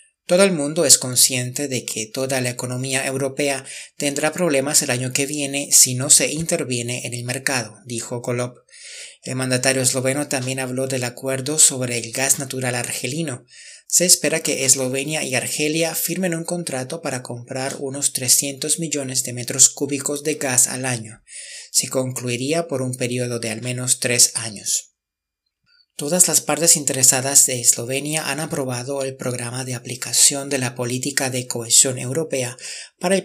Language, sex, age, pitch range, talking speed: Spanish, male, 30-49, 125-145 Hz, 160 wpm